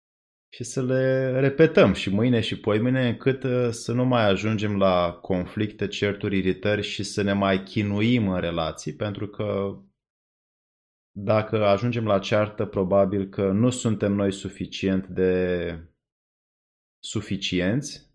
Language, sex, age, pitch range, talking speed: Romanian, male, 30-49, 90-105 Hz, 130 wpm